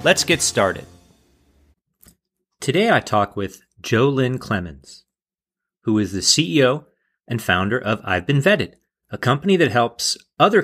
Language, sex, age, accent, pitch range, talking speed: English, male, 30-49, American, 100-135 Hz, 140 wpm